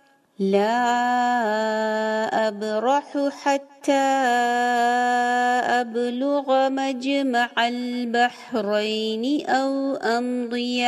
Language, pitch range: English, 240-275 Hz